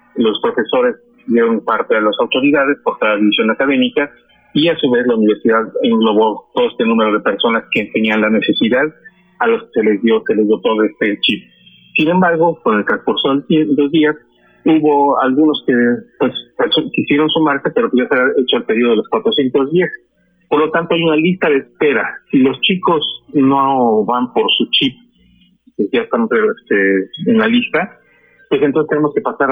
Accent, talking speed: Mexican, 180 wpm